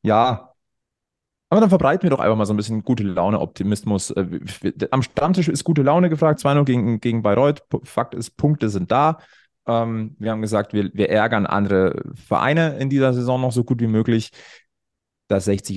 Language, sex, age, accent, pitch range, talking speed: German, male, 30-49, German, 95-120 Hz, 185 wpm